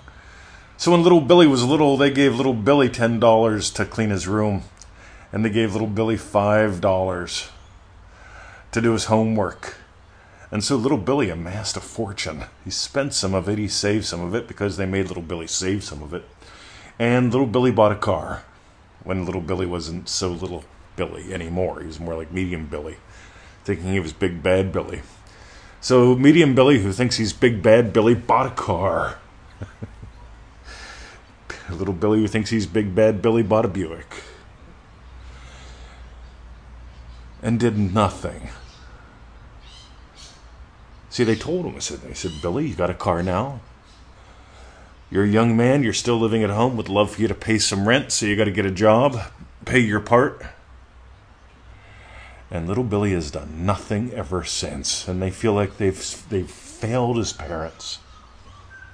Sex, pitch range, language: male, 85-110 Hz, English